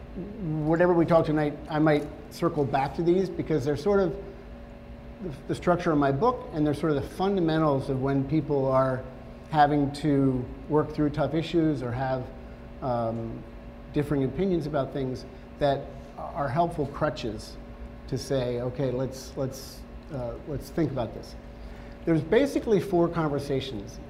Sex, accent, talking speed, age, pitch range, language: male, American, 150 wpm, 50-69, 130-165 Hz, English